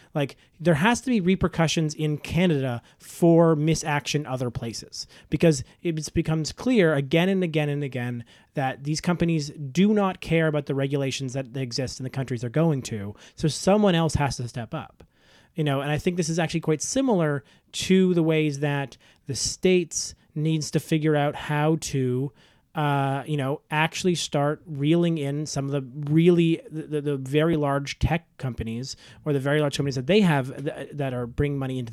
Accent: American